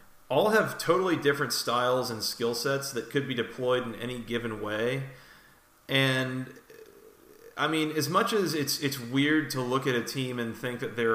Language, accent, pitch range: English, American, 115-140 Hz